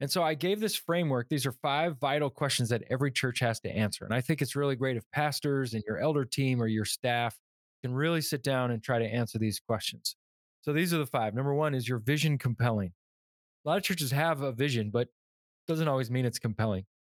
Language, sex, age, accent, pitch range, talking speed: English, male, 20-39, American, 115-145 Hz, 235 wpm